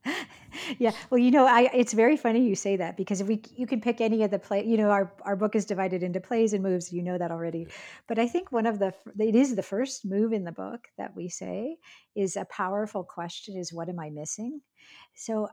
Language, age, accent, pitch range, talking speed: English, 50-69, American, 170-215 Hz, 245 wpm